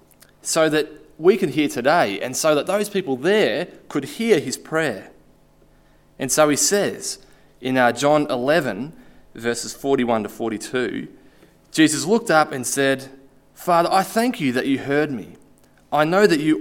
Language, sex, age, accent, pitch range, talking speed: English, male, 20-39, Australian, 130-185 Hz, 160 wpm